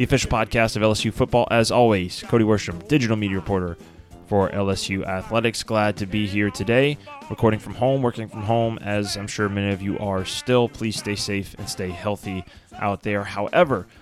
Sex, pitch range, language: male, 100-120 Hz, English